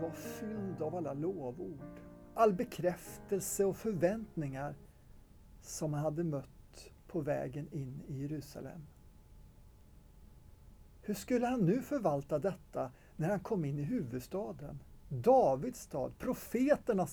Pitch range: 140-190 Hz